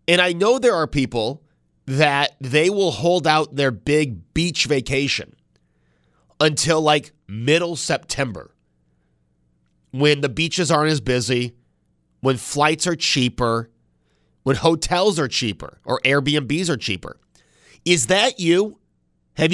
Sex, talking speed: male, 125 wpm